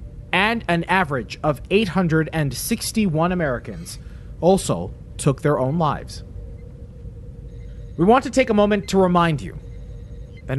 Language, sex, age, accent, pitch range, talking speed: English, male, 30-49, American, 115-175 Hz, 120 wpm